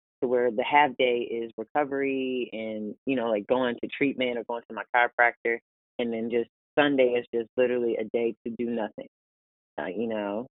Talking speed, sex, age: 195 wpm, female, 20-39